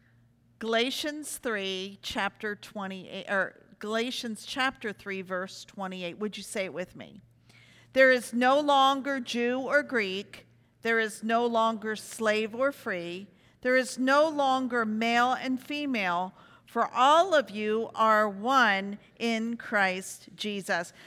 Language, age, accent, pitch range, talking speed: English, 50-69, American, 205-275 Hz, 130 wpm